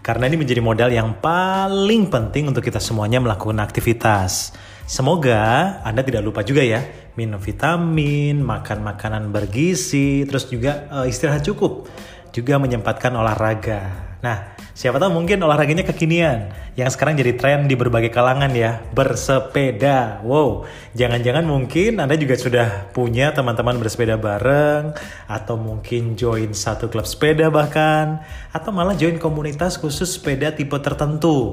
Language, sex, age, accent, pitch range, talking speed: Indonesian, male, 30-49, native, 110-140 Hz, 135 wpm